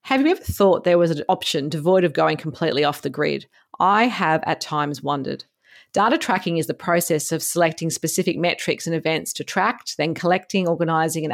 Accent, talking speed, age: Australian, 195 wpm, 40-59